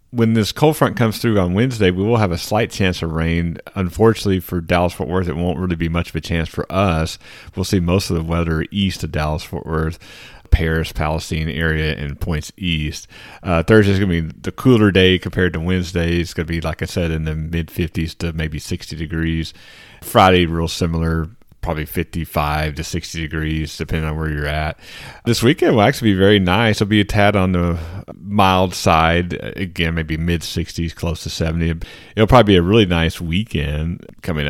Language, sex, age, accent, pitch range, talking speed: English, male, 40-59, American, 80-100 Hz, 195 wpm